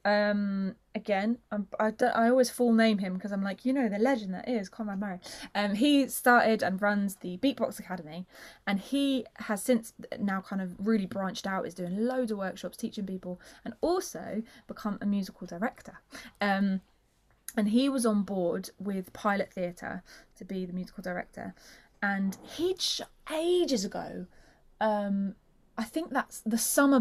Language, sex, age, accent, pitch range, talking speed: English, female, 20-39, British, 195-245 Hz, 170 wpm